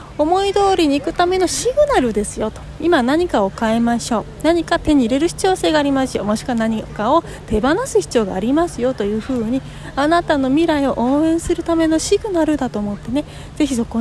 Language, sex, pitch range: Japanese, female, 245-320 Hz